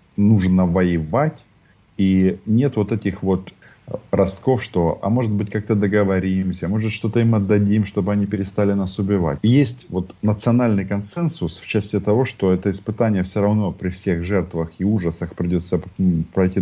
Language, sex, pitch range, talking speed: English, male, 90-110 Hz, 150 wpm